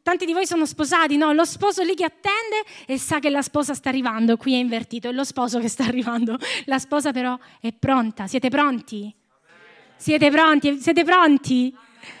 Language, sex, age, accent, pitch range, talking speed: Italian, female, 20-39, native, 235-295 Hz, 185 wpm